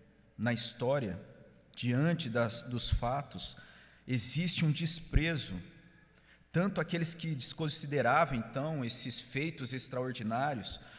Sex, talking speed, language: male, 85 wpm, Portuguese